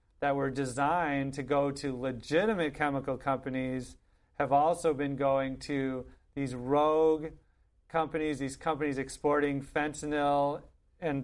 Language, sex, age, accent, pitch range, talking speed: English, male, 40-59, American, 135-160 Hz, 115 wpm